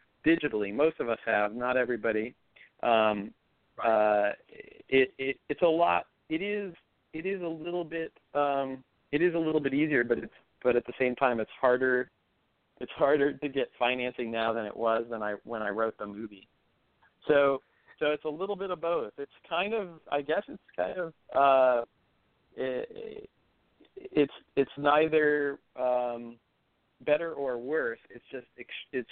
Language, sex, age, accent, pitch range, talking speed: English, male, 40-59, American, 115-145 Hz, 165 wpm